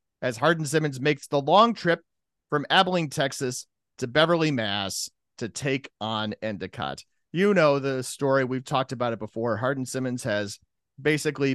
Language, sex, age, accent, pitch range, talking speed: English, male, 40-59, American, 130-160 Hz, 145 wpm